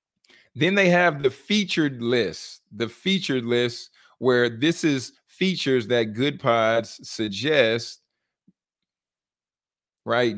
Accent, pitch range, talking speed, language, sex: American, 115-135 Hz, 105 wpm, English, male